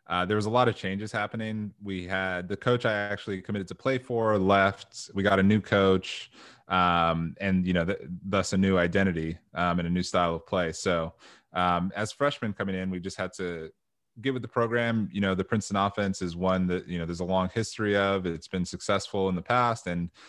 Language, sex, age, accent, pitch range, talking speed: English, male, 20-39, American, 90-105 Hz, 220 wpm